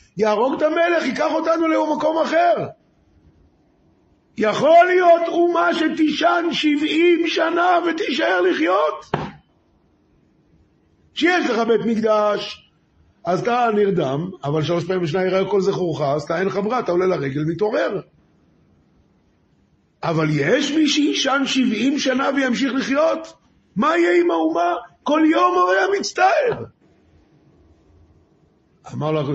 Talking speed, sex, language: 115 wpm, male, Hebrew